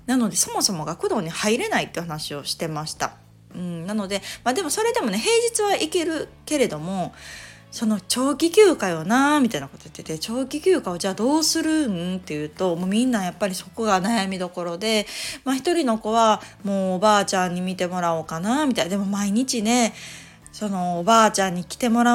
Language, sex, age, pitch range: Japanese, female, 20-39, 175-225 Hz